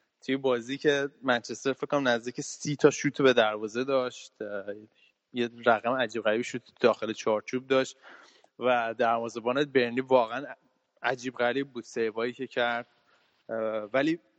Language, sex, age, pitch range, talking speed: Persian, male, 20-39, 115-135 Hz, 135 wpm